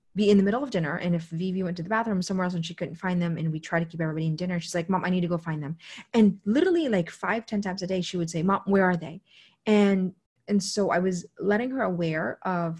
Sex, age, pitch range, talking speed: female, 30-49, 170-210 Hz, 285 wpm